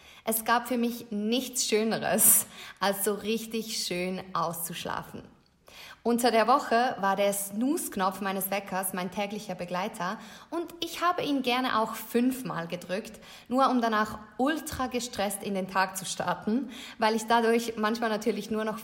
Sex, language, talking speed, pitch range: female, German, 150 wpm, 195-235 Hz